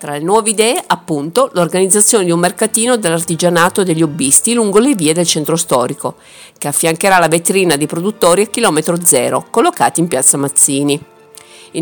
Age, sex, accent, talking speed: 50-69, female, native, 170 wpm